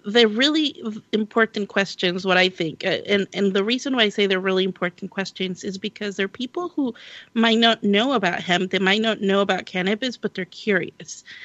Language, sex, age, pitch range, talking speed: English, female, 30-49, 185-230 Hz, 195 wpm